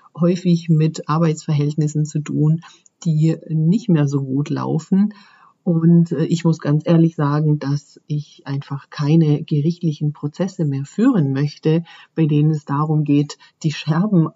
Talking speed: 140 wpm